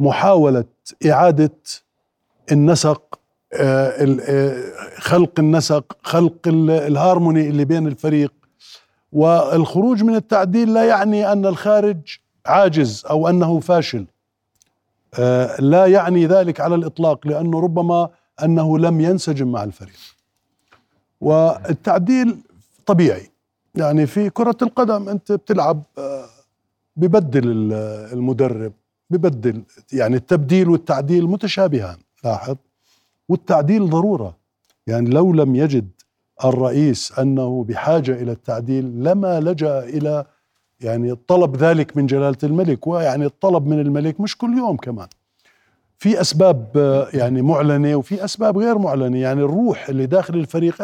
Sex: male